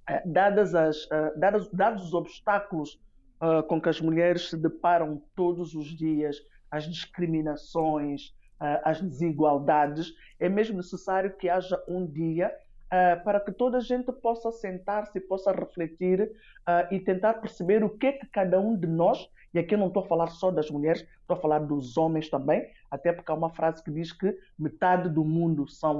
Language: Portuguese